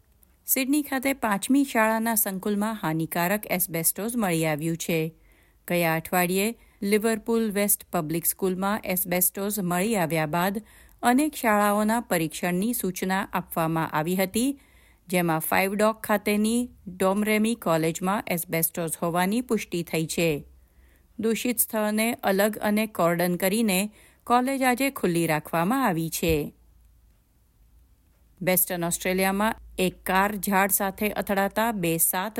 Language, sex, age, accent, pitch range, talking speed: Gujarati, female, 50-69, native, 170-220 Hz, 90 wpm